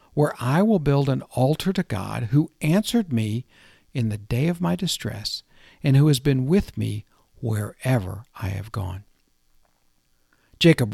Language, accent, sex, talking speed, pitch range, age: English, American, male, 155 wpm, 105-150 Hz, 60-79